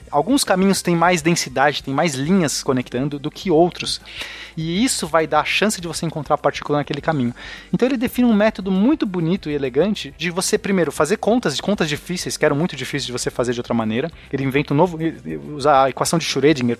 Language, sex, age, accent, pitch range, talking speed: Portuguese, male, 20-39, Brazilian, 140-195 Hz, 220 wpm